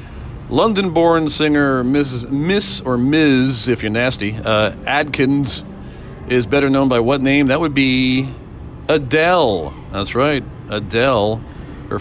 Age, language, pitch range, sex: 40-59, English, 110-140 Hz, male